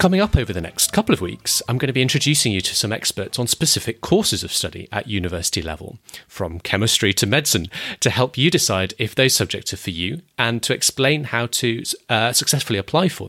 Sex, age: male, 30-49